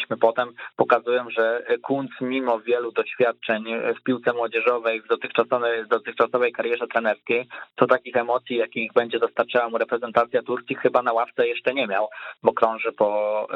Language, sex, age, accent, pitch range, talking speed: Polish, male, 20-39, native, 115-130 Hz, 150 wpm